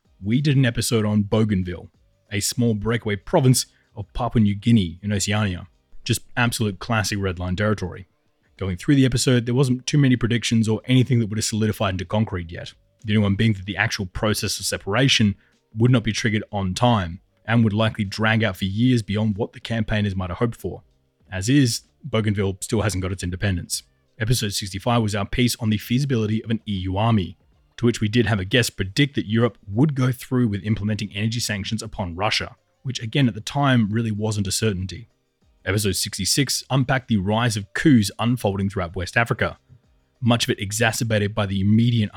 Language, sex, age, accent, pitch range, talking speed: English, male, 20-39, Australian, 95-120 Hz, 195 wpm